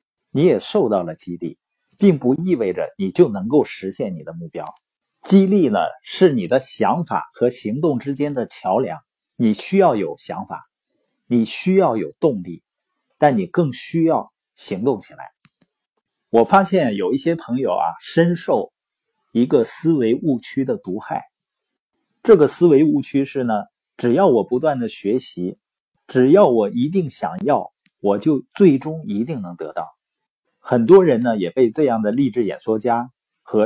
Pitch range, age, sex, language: 120-195 Hz, 50-69, male, Chinese